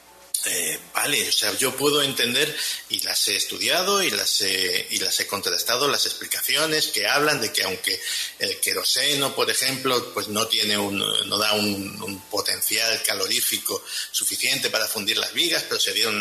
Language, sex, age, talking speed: Spanish, male, 50-69, 175 wpm